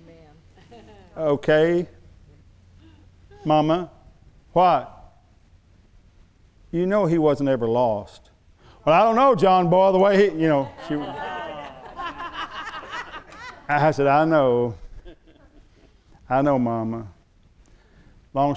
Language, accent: English, American